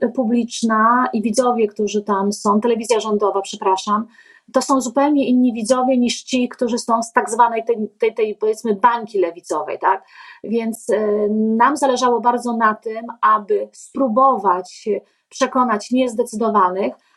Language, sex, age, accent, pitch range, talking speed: Polish, female, 30-49, native, 225-275 Hz, 135 wpm